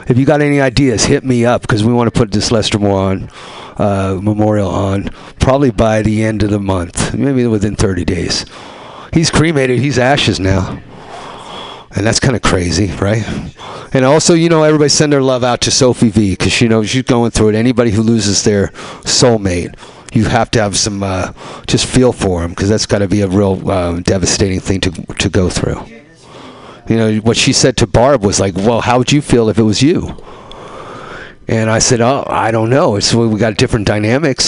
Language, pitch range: English, 100-120 Hz